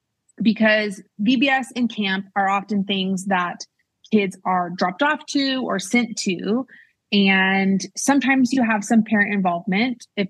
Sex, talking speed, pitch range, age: female, 140 wpm, 185-225 Hz, 30-49